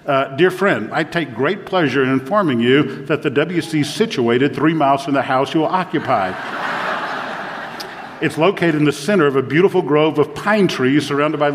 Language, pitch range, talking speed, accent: English, 140-165 Hz, 190 wpm, American